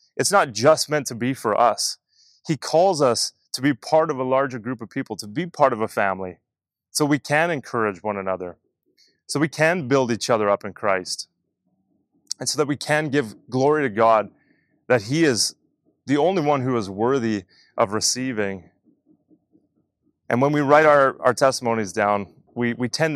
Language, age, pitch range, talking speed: English, 20-39, 105-140 Hz, 185 wpm